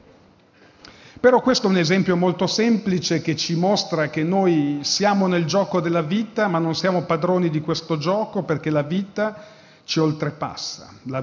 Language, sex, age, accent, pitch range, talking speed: Italian, male, 40-59, native, 145-180 Hz, 160 wpm